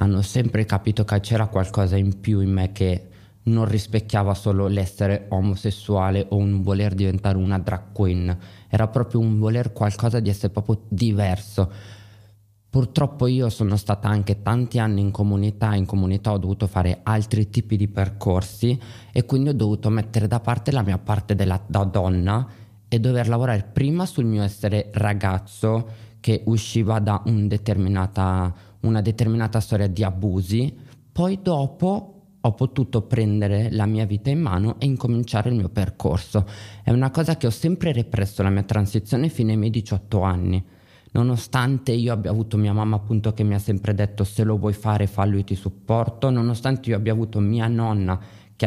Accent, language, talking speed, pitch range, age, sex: native, Italian, 170 wpm, 100-115 Hz, 20-39, male